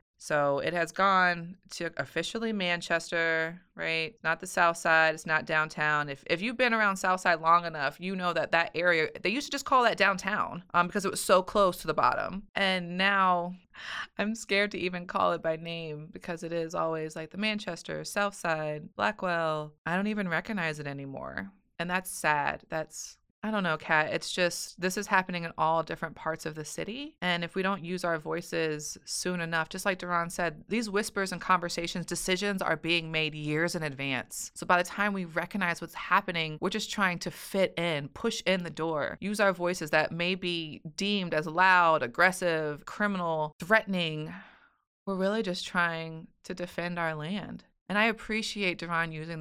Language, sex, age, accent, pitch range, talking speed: English, female, 20-39, American, 160-190 Hz, 190 wpm